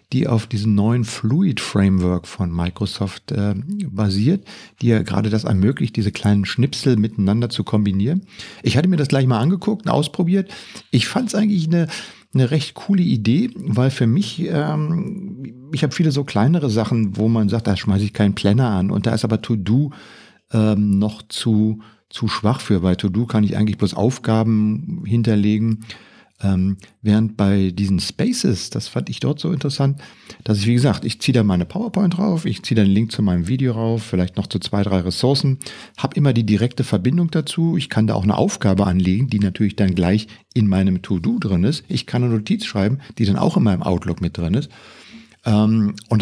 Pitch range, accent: 105-155 Hz, German